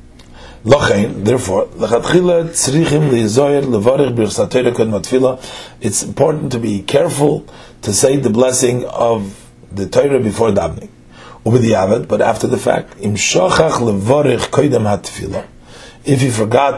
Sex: male